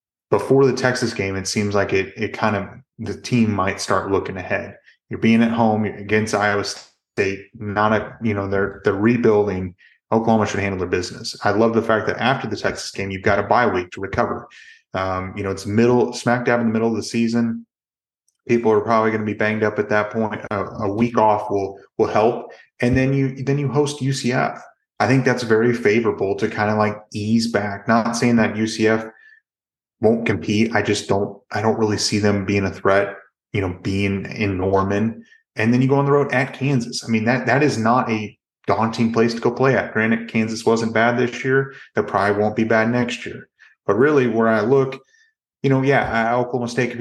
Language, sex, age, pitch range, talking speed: English, male, 30-49, 105-125 Hz, 215 wpm